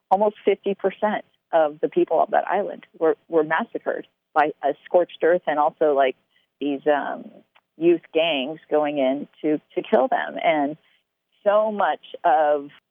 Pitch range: 155-195 Hz